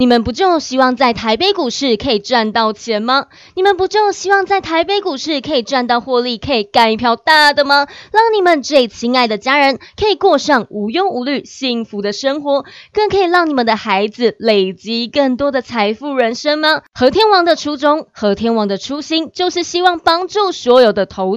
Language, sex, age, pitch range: Chinese, female, 20-39, 240-345 Hz